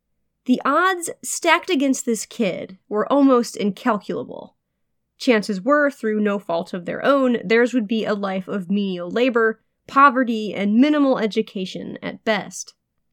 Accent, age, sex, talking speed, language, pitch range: American, 20-39, female, 140 wpm, English, 205-265 Hz